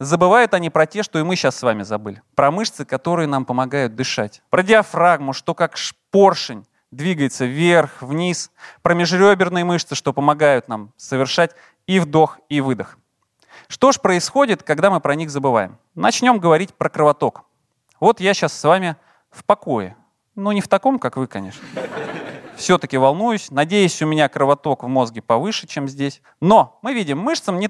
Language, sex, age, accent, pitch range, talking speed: Russian, male, 30-49, native, 135-190 Hz, 170 wpm